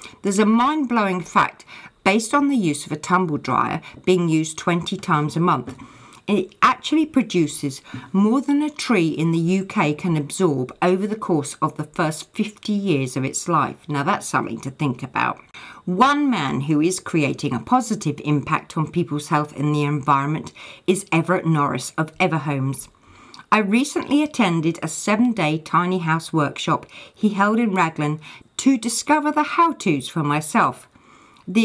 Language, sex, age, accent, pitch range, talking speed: English, female, 50-69, British, 150-215 Hz, 160 wpm